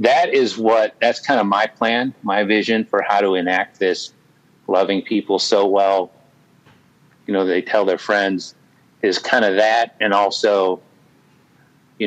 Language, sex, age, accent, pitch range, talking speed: English, male, 30-49, American, 95-120 Hz, 160 wpm